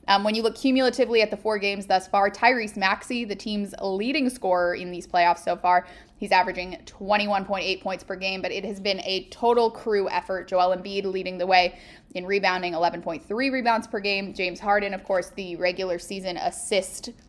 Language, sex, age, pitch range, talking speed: English, female, 20-39, 185-210 Hz, 190 wpm